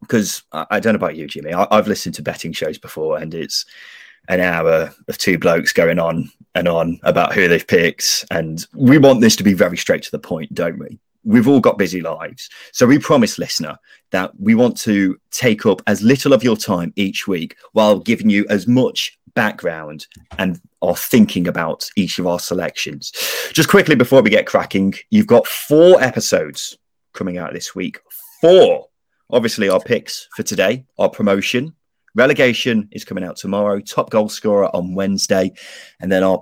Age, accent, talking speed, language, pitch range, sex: 30-49, British, 185 wpm, English, 95-150 Hz, male